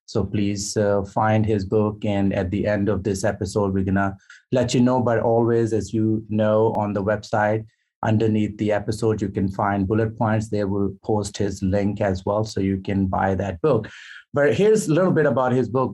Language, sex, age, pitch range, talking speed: English, male, 30-49, 100-120 Hz, 210 wpm